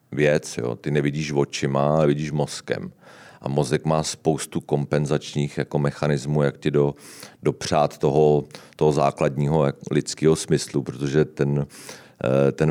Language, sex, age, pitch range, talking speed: Czech, male, 40-59, 70-80 Hz, 130 wpm